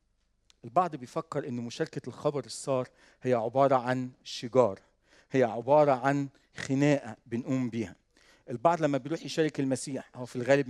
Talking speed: 135 wpm